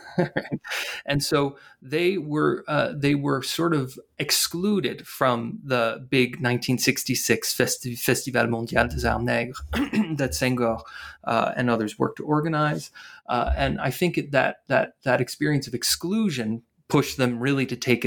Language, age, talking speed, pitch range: English, 30-49, 145 wpm, 120-140 Hz